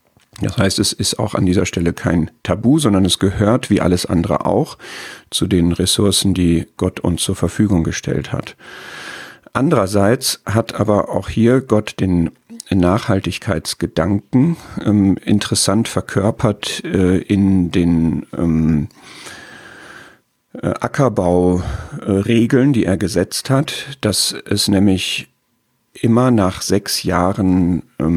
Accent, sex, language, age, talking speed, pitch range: German, male, German, 50-69, 115 wpm, 90-105 Hz